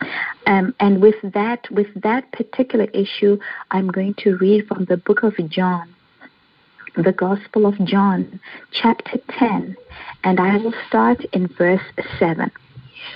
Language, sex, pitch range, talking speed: English, female, 195-245 Hz, 130 wpm